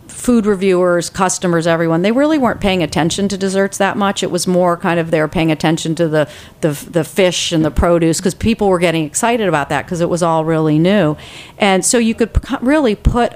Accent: American